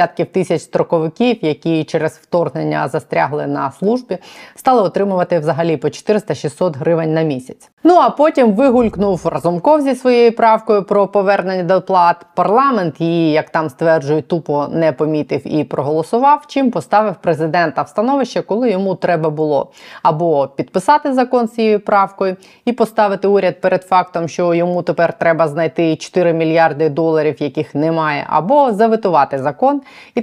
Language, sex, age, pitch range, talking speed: Ukrainian, female, 20-39, 160-210 Hz, 145 wpm